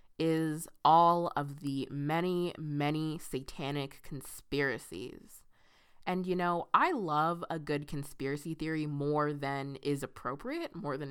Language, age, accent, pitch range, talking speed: English, 20-39, American, 140-175 Hz, 125 wpm